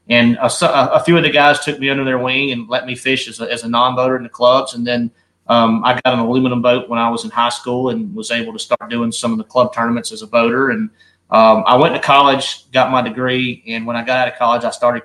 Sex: male